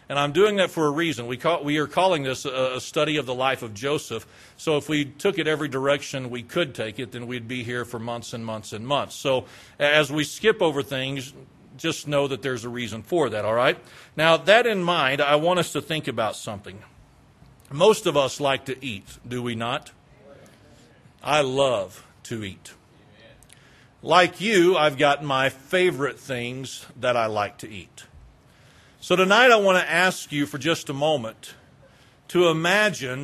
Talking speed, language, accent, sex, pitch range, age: 190 wpm, English, American, male, 130-165 Hz, 40-59